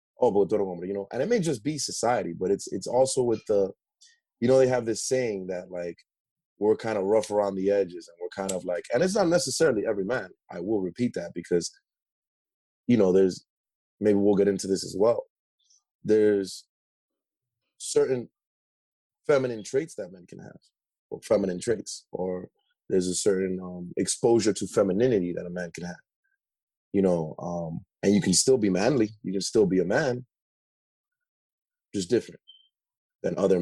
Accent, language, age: American, English, 30-49